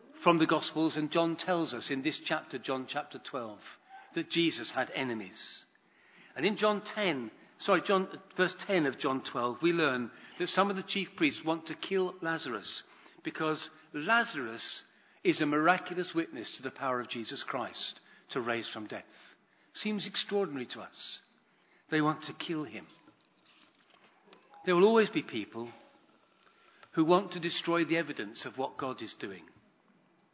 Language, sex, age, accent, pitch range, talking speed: English, male, 50-69, British, 145-190 Hz, 160 wpm